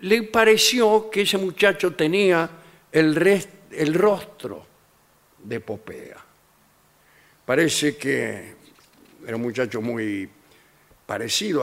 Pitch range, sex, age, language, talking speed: 125-180 Hz, male, 60-79, Spanish, 95 wpm